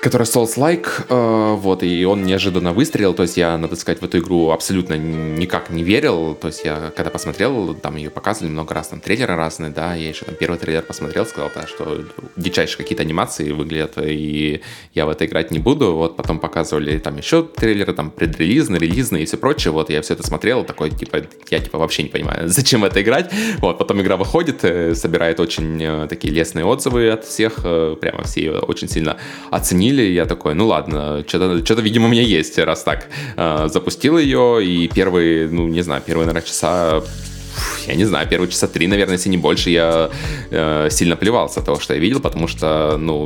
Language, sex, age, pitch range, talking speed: Russian, male, 20-39, 80-105 Hz, 195 wpm